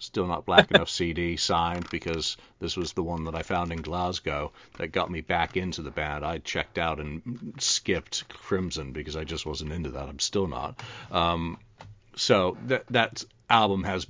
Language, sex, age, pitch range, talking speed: English, male, 50-69, 85-115 Hz, 185 wpm